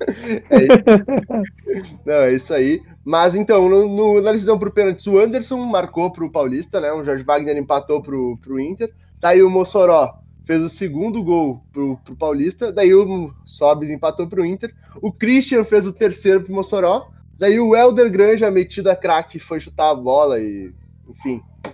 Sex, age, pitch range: male, 20-39, 155-210 Hz